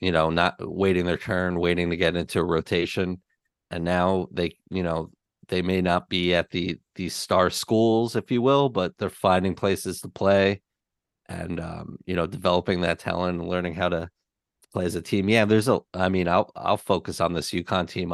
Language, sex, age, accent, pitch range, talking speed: English, male, 30-49, American, 90-100 Hz, 205 wpm